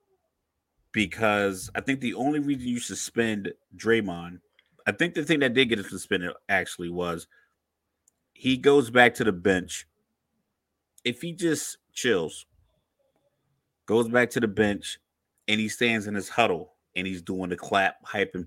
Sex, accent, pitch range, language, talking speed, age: male, American, 95-120 Hz, English, 155 wpm, 30-49